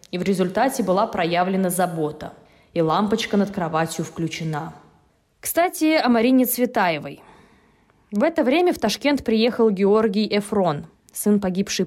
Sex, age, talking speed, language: female, 20-39, 125 wpm, Russian